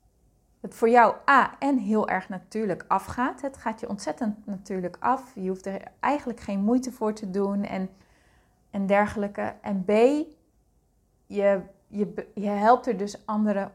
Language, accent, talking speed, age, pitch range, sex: Dutch, Dutch, 155 wpm, 30-49, 200-240 Hz, female